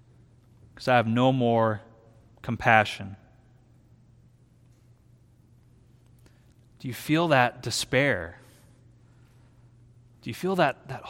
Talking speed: 85 wpm